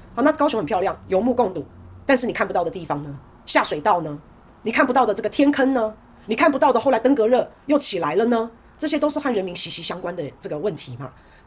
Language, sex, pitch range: Chinese, female, 170-270 Hz